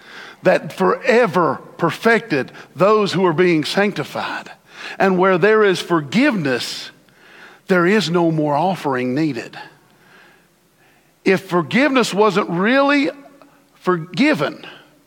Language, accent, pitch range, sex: English, American, 155-215 Hz, male